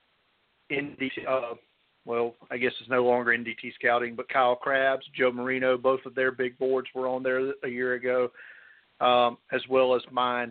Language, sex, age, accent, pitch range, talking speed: English, male, 40-59, American, 120-135 Hz, 185 wpm